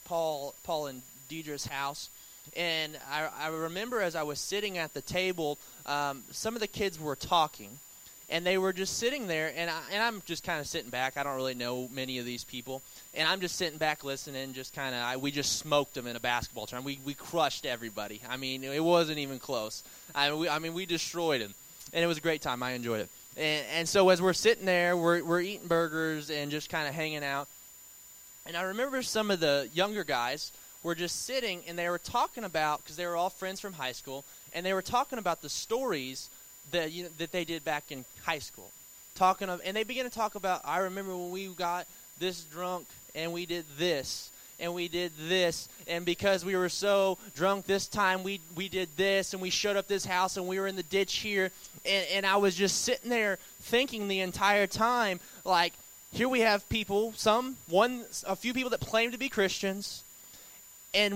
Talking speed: 215 wpm